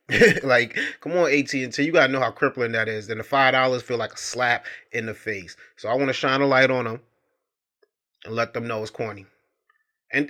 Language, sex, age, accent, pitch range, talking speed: English, male, 30-49, American, 120-150 Hz, 220 wpm